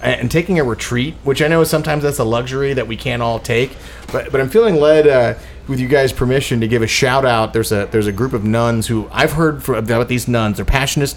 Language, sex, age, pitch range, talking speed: English, male, 30-49, 110-135 Hz, 245 wpm